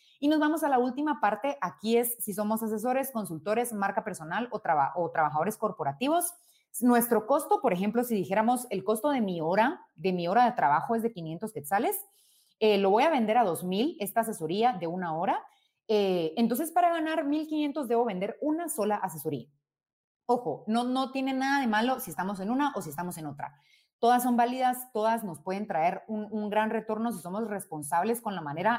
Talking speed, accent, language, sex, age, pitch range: 200 wpm, Mexican, Spanish, female, 30-49, 190-255 Hz